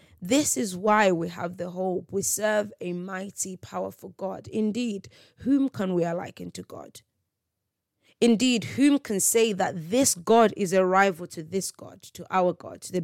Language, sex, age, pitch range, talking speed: English, female, 20-39, 175-225 Hz, 175 wpm